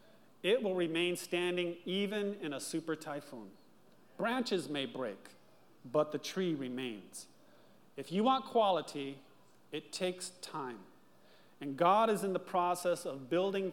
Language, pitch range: English, 140-185 Hz